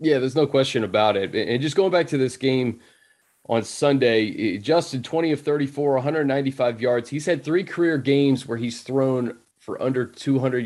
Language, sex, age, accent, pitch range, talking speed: English, male, 30-49, American, 120-145 Hz, 180 wpm